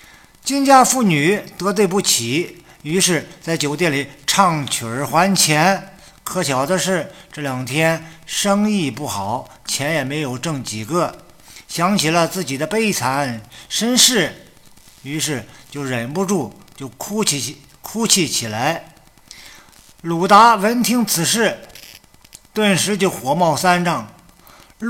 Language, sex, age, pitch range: Chinese, male, 50-69, 140-195 Hz